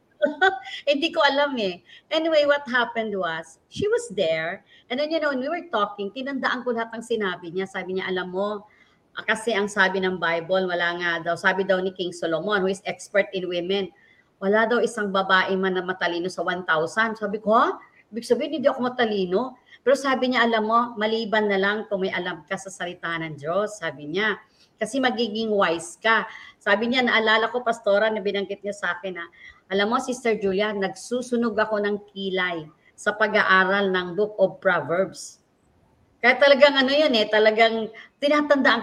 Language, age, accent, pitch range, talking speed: English, 40-59, Filipino, 190-240 Hz, 180 wpm